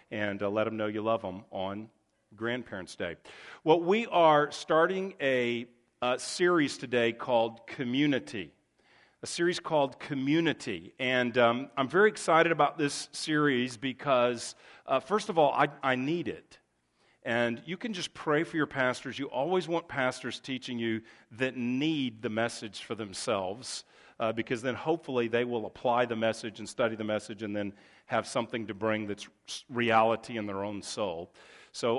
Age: 40-59